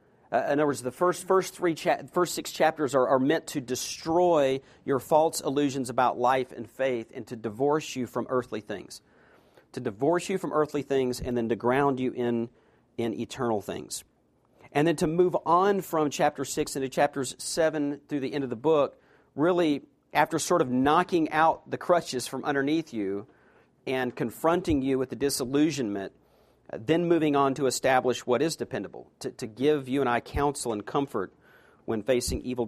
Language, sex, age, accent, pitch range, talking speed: English, male, 40-59, American, 125-155 Hz, 180 wpm